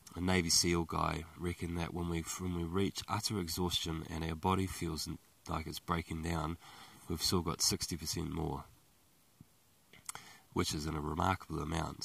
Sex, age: male, 20-39